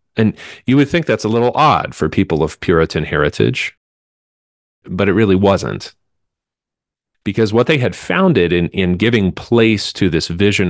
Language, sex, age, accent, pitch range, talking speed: English, male, 40-59, American, 85-110 Hz, 165 wpm